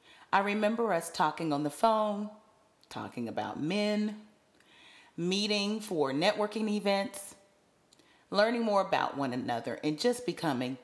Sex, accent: female, American